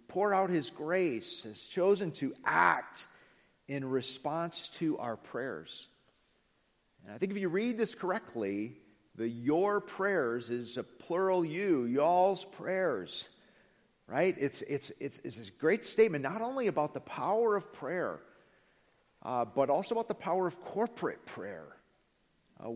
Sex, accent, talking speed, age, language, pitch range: male, American, 145 wpm, 50-69, English, 125-190 Hz